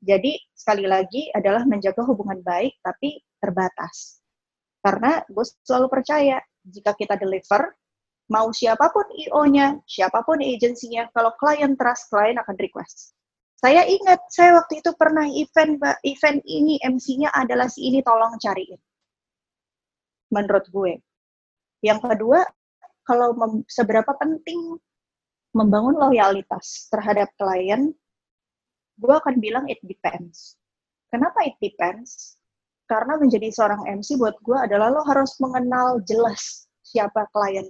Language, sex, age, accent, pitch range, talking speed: Indonesian, female, 20-39, native, 210-285 Hz, 120 wpm